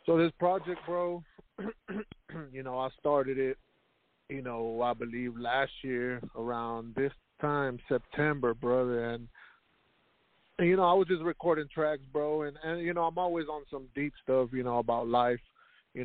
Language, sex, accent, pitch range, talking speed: English, male, American, 125-155 Hz, 170 wpm